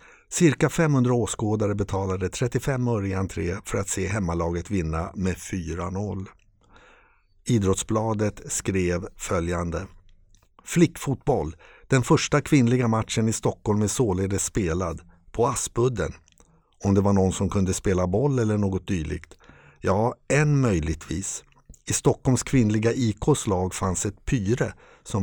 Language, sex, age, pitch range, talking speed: Swedish, male, 60-79, 95-120 Hz, 120 wpm